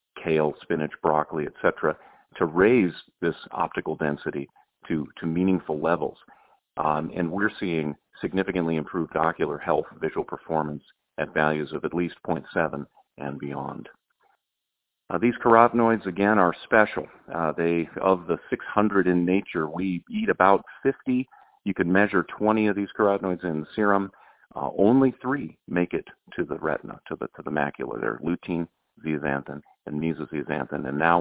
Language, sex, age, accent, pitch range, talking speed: English, male, 40-59, American, 75-95 Hz, 145 wpm